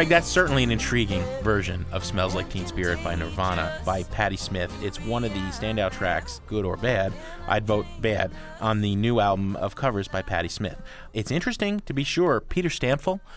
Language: English